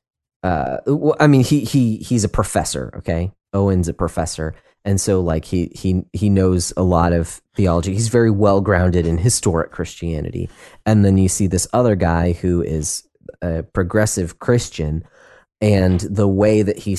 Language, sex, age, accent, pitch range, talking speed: English, male, 30-49, American, 85-110 Hz, 170 wpm